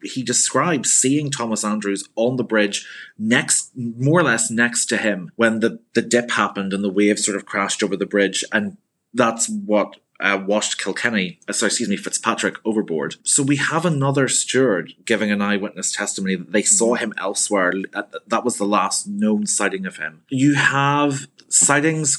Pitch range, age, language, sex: 100-130 Hz, 30-49, English, male